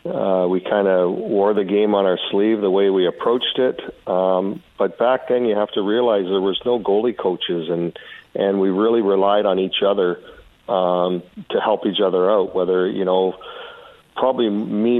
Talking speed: 190 wpm